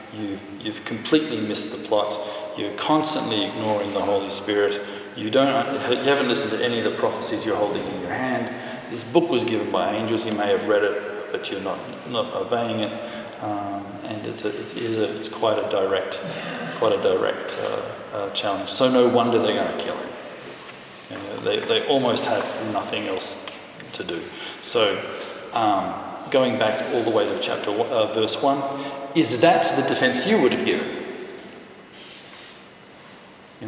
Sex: male